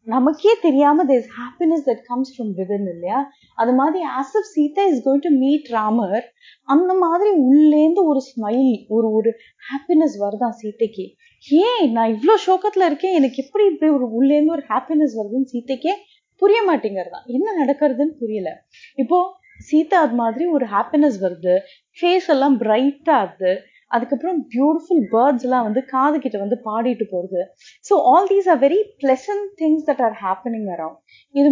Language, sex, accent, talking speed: Tamil, female, native, 150 wpm